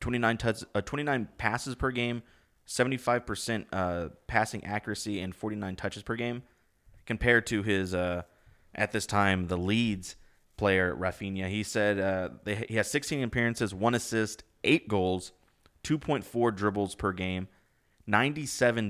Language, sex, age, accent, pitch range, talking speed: English, male, 30-49, American, 95-120 Hz, 140 wpm